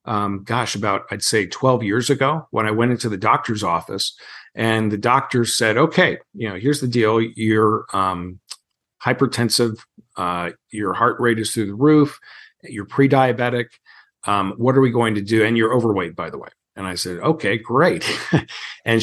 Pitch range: 105-130 Hz